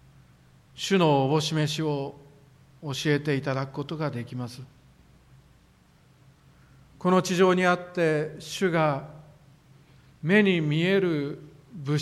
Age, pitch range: 50-69, 135-165 Hz